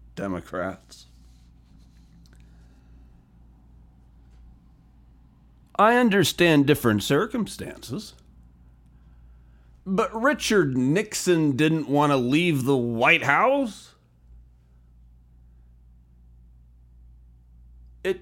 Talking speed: 55 wpm